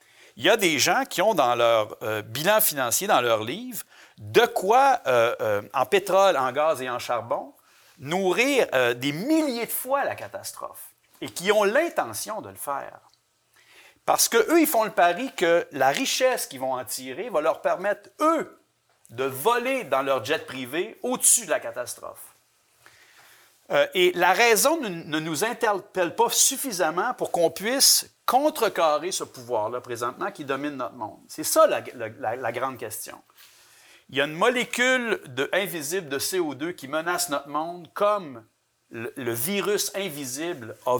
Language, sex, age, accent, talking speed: French, male, 50-69, Canadian, 165 wpm